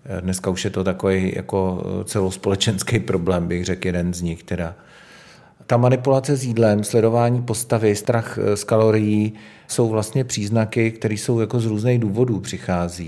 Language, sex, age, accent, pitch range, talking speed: Czech, male, 40-59, native, 95-110 Hz, 150 wpm